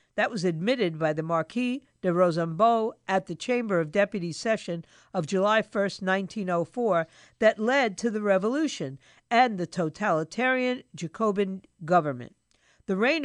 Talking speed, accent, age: 135 wpm, American, 50-69